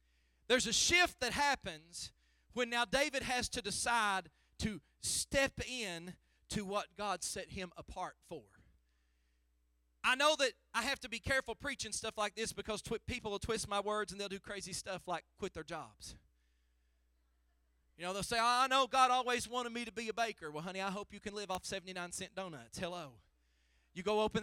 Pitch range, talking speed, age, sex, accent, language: 165-225 Hz, 190 wpm, 40-59, male, American, English